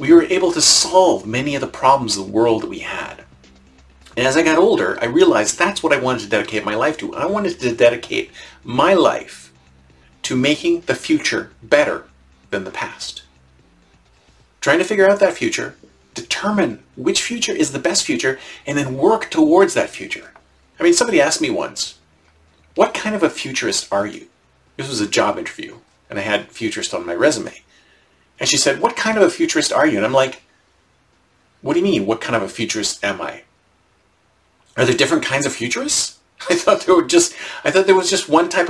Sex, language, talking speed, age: male, English, 205 wpm, 40-59